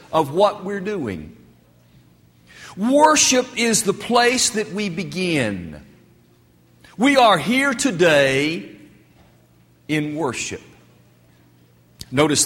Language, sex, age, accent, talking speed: English, male, 60-79, American, 85 wpm